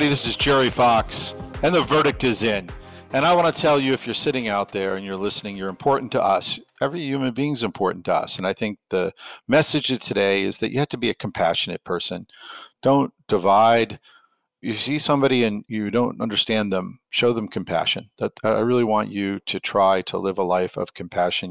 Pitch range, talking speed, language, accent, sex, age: 100-135 Hz, 210 wpm, English, American, male, 50-69